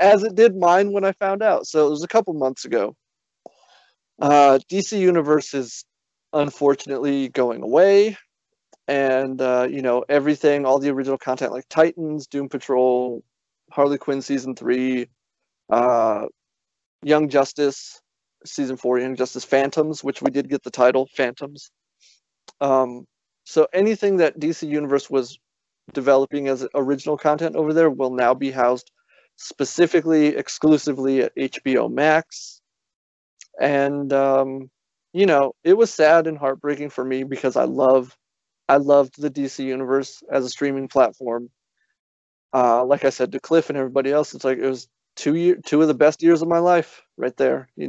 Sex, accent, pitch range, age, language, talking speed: male, American, 130-155 Hz, 30-49, English, 155 wpm